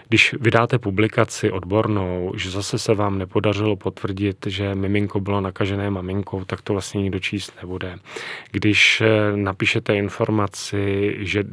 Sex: male